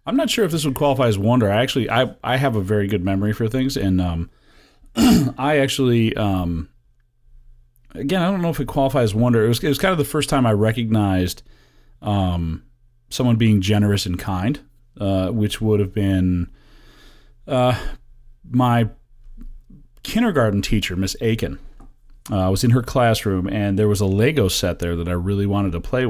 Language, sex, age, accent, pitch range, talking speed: English, male, 30-49, American, 90-120 Hz, 185 wpm